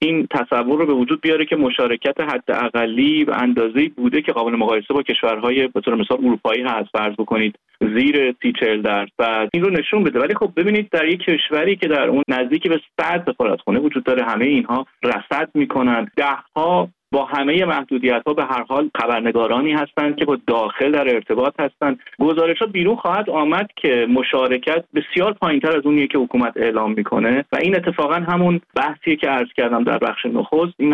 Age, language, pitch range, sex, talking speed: 30-49, Persian, 120-165 Hz, male, 180 wpm